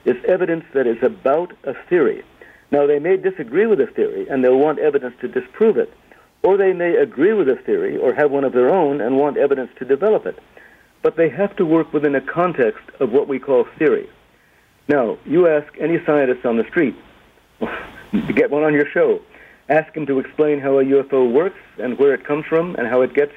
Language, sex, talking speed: English, male, 215 wpm